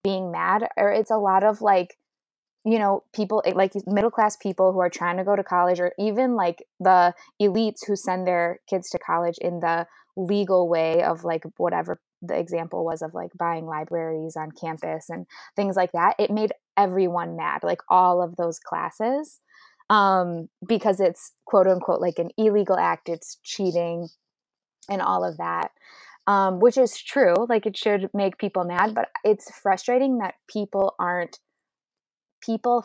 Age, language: 20-39, English